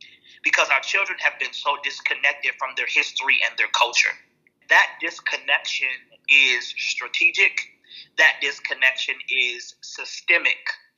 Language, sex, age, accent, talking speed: English, male, 30-49, American, 115 wpm